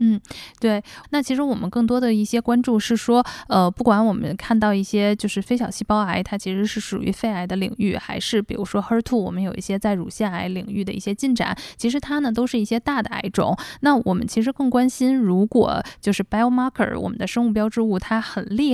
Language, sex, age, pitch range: Chinese, female, 10-29, 195-235 Hz